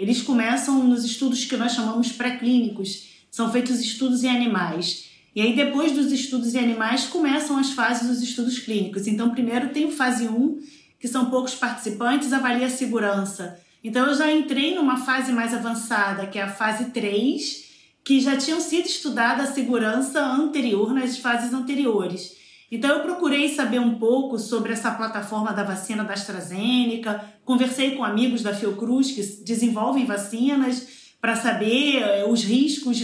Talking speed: 160 wpm